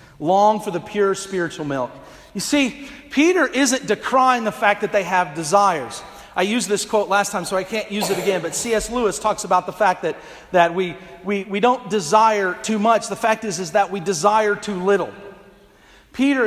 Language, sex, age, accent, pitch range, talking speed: English, male, 40-59, American, 170-225 Hz, 200 wpm